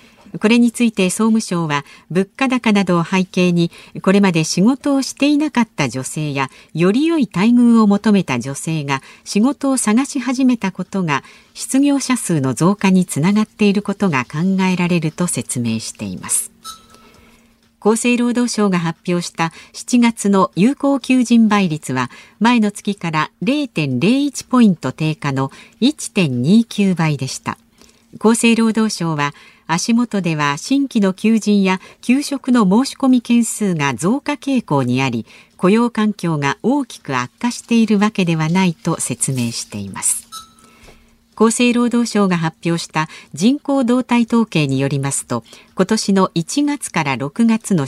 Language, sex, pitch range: Japanese, female, 160-235 Hz